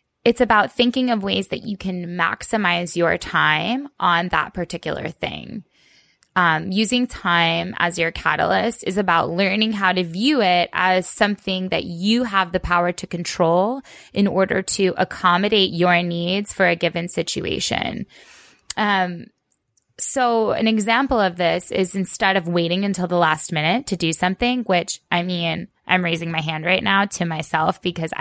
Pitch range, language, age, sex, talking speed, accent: 170-210 Hz, English, 20-39, female, 160 wpm, American